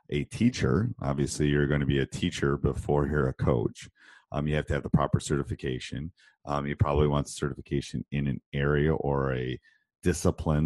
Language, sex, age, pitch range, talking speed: English, male, 40-59, 70-85 Hz, 180 wpm